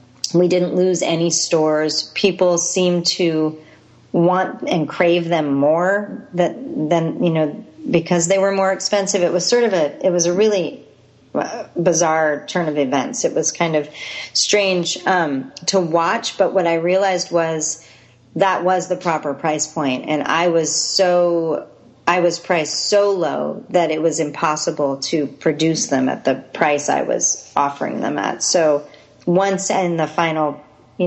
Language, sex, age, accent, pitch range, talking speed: English, female, 40-59, American, 155-185 Hz, 160 wpm